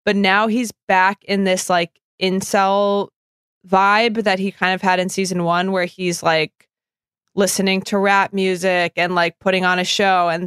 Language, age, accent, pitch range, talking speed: English, 20-39, American, 180-215 Hz, 180 wpm